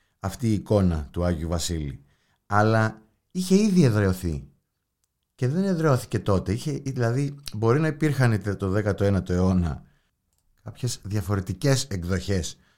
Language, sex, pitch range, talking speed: Greek, male, 90-145 Hz, 115 wpm